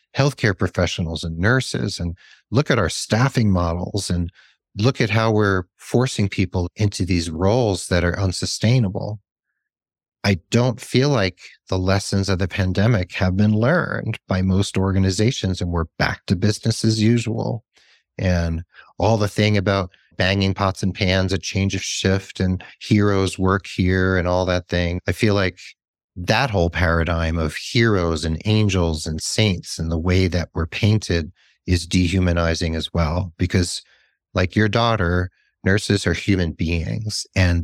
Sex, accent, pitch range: male, American, 85-105 Hz